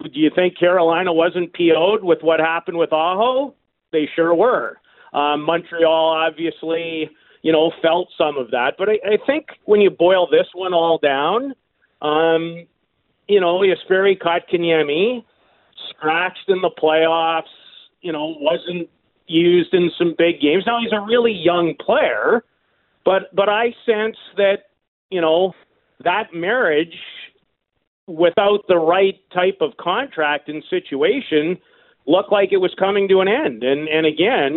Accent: American